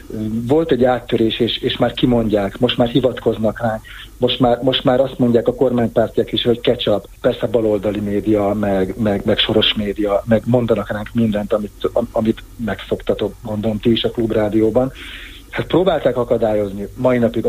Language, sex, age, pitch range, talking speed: Hungarian, male, 40-59, 105-125 Hz, 165 wpm